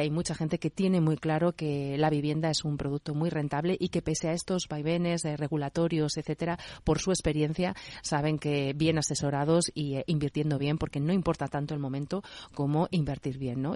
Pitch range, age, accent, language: 150-175 Hz, 30-49, Spanish, Spanish